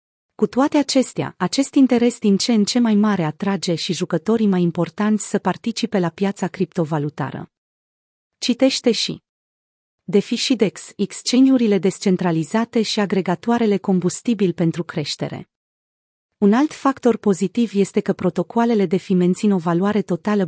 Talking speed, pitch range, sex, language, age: 125 wpm, 180-220 Hz, female, Romanian, 30-49